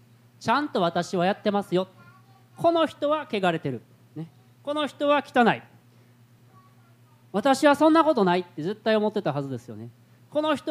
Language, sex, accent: Japanese, male, native